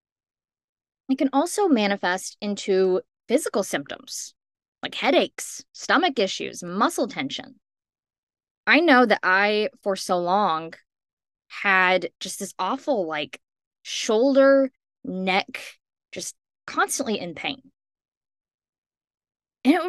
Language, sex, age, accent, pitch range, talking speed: English, female, 20-39, American, 185-265 Hz, 95 wpm